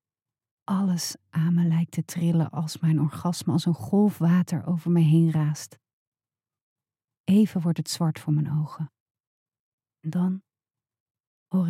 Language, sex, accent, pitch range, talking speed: Dutch, female, Dutch, 125-170 Hz, 140 wpm